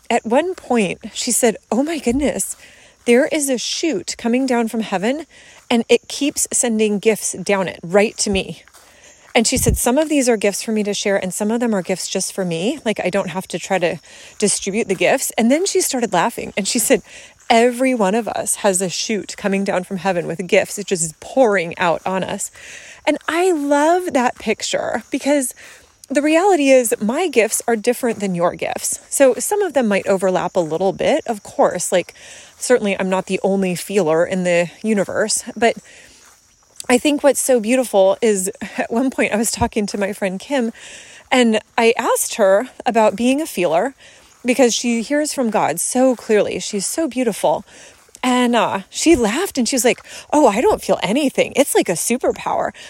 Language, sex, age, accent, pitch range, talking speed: English, female, 30-49, American, 195-270 Hz, 195 wpm